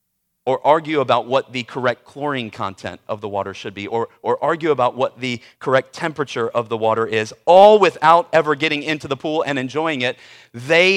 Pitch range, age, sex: 140-205 Hz, 40-59, male